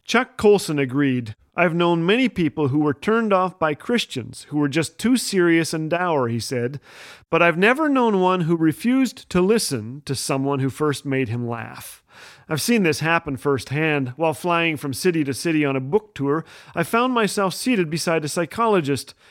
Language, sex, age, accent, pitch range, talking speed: English, male, 40-59, American, 150-205 Hz, 185 wpm